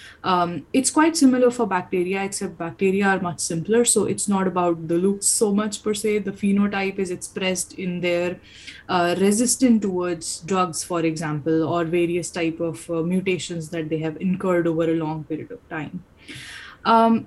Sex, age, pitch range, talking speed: female, 20-39, 170-210 Hz, 175 wpm